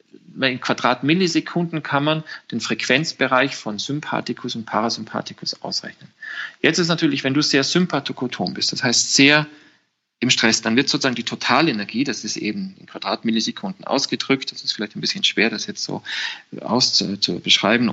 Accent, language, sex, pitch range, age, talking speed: German, German, male, 120-155 Hz, 40-59, 150 wpm